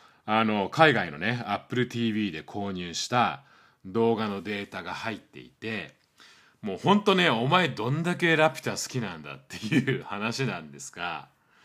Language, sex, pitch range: Japanese, male, 105-140 Hz